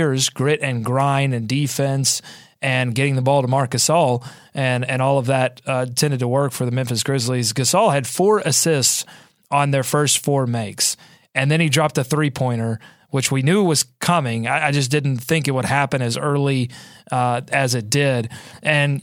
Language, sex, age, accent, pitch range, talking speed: English, male, 30-49, American, 125-150 Hz, 185 wpm